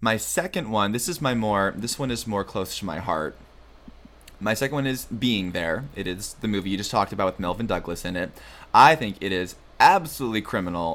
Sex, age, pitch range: male, 20-39, 90-120 Hz